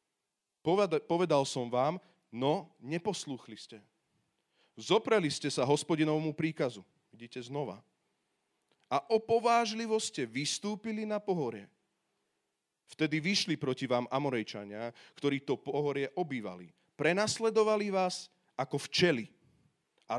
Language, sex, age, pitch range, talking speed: Slovak, male, 40-59, 120-175 Hz, 100 wpm